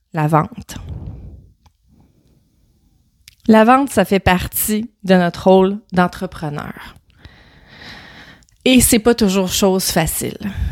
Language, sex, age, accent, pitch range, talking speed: French, female, 30-49, Canadian, 165-210 Hz, 95 wpm